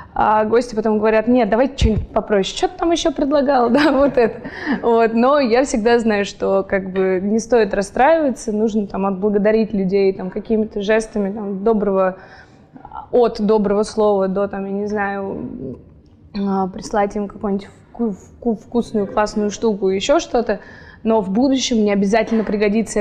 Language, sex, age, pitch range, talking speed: Russian, female, 20-39, 200-225 Hz, 145 wpm